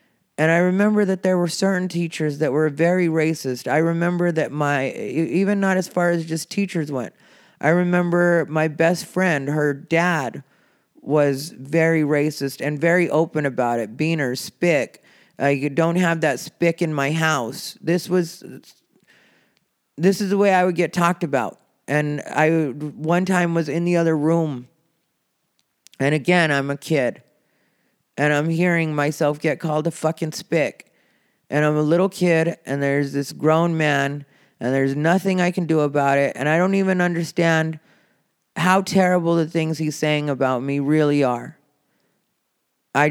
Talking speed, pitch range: 165 wpm, 145-175 Hz